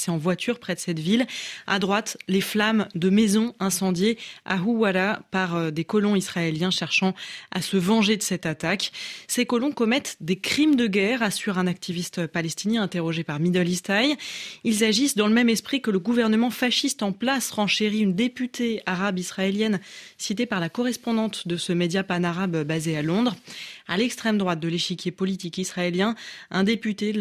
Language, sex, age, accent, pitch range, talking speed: French, female, 20-39, French, 180-230 Hz, 180 wpm